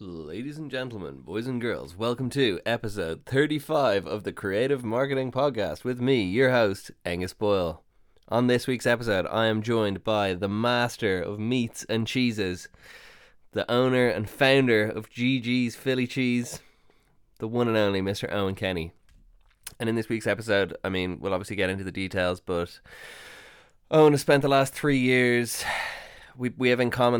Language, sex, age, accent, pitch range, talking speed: English, male, 20-39, Irish, 95-120 Hz, 170 wpm